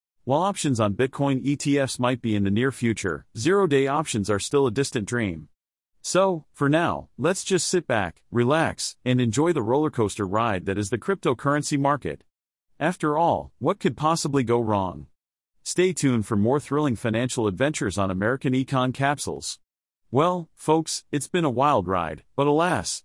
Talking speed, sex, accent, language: 165 wpm, male, American, English